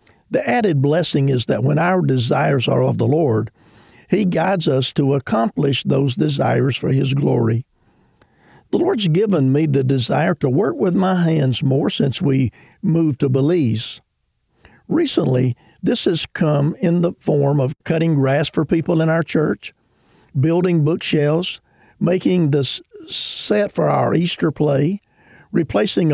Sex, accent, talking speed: male, American, 145 wpm